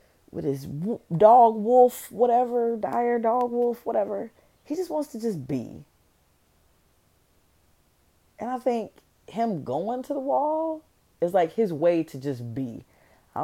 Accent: American